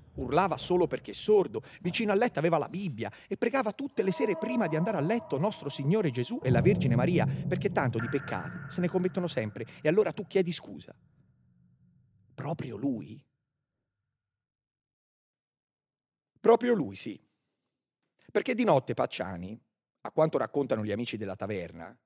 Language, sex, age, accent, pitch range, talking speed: Italian, male, 40-59, native, 110-175 Hz, 150 wpm